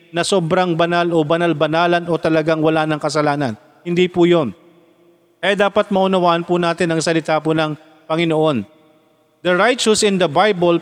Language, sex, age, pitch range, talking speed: Filipino, male, 40-59, 155-190 Hz, 155 wpm